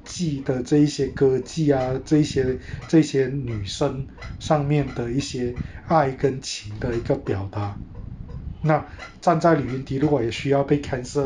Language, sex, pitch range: Chinese, male, 115-150 Hz